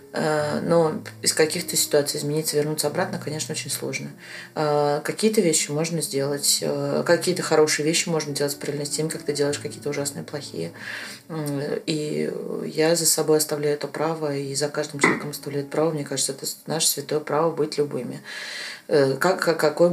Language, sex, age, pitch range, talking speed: Russian, female, 20-39, 140-155 Hz, 155 wpm